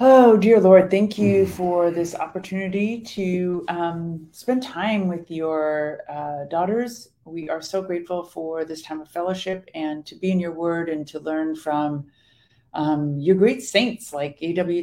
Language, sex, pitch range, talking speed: English, female, 150-185 Hz, 165 wpm